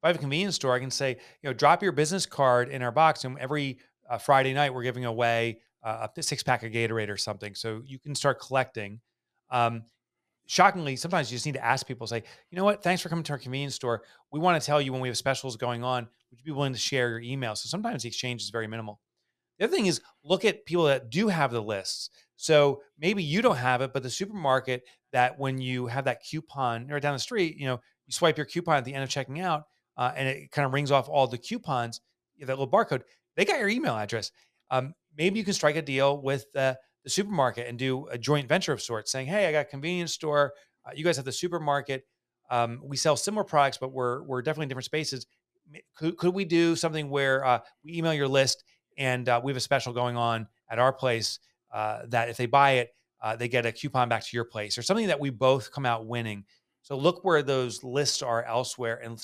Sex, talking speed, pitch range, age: male, 245 wpm, 120-150 Hz, 30-49